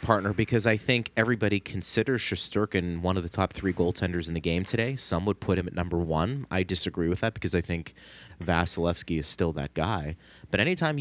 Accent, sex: American, male